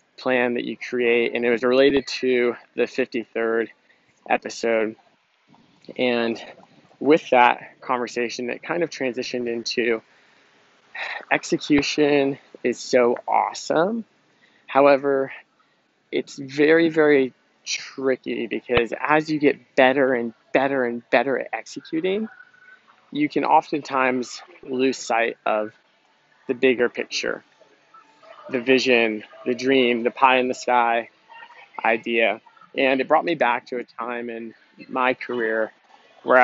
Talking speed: 120 wpm